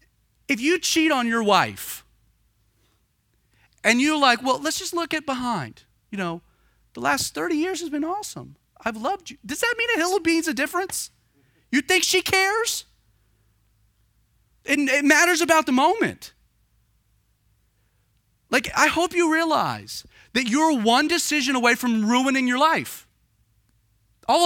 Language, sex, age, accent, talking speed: English, male, 30-49, American, 150 wpm